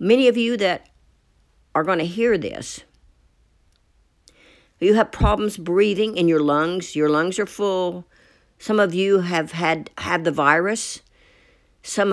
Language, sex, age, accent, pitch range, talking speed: English, female, 60-79, American, 140-195 Hz, 145 wpm